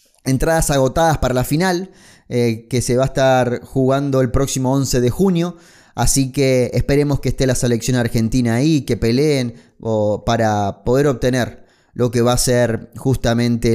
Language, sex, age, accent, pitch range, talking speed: Spanish, male, 20-39, Argentinian, 120-155 Hz, 165 wpm